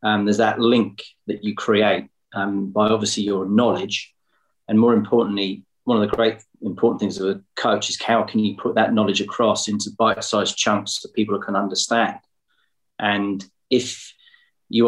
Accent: British